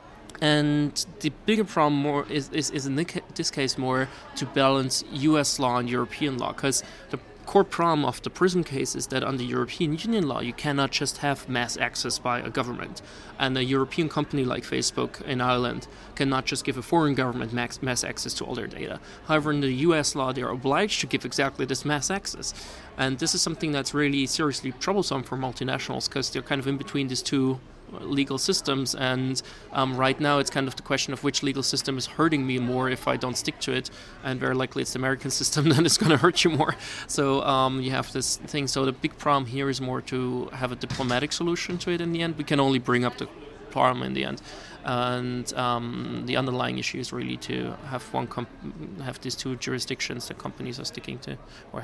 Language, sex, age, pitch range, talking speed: Danish, male, 20-39, 130-150 Hz, 215 wpm